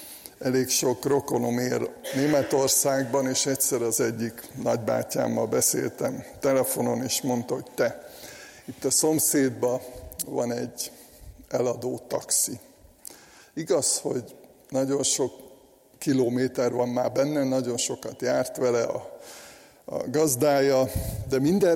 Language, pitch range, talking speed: Hungarian, 125-150 Hz, 110 wpm